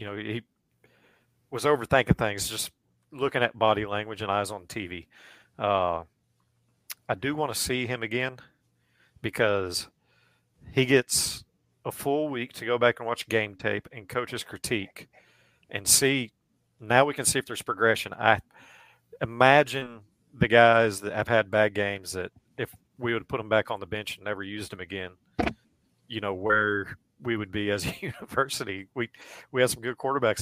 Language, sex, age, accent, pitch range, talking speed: English, male, 40-59, American, 105-130 Hz, 175 wpm